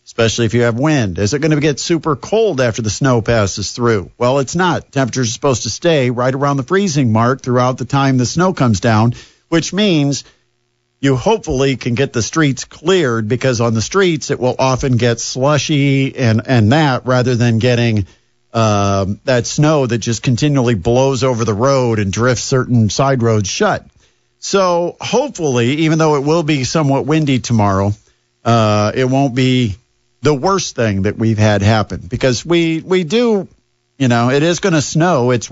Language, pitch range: English, 120-155 Hz